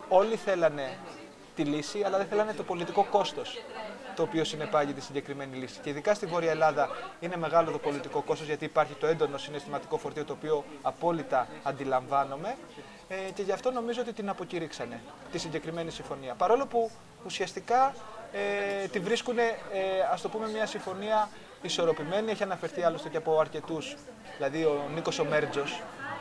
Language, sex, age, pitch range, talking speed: Greek, male, 20-39, 150-205 Hz, 155 wpm